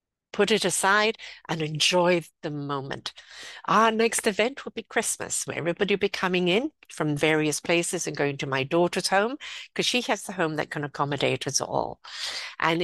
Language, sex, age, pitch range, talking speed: English, female, 60-79, 160-215 Hz, 180 wpm